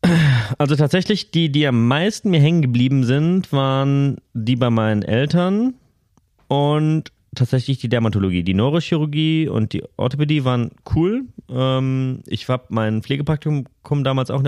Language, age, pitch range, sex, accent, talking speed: German, 30-49, 110-135 Hz, male, German, 135 wpm